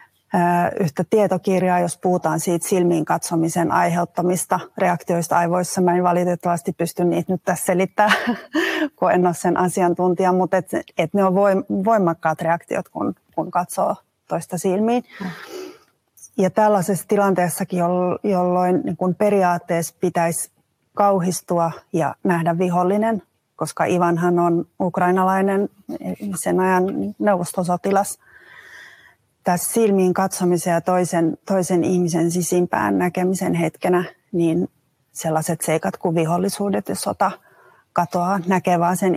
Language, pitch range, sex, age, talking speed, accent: Finnish, 175-190 Hz, female, 30-49, 110 wpm, native